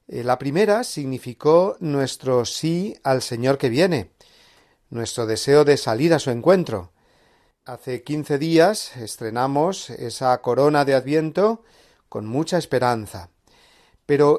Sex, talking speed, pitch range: male, 115 wpm, 125-160 Hz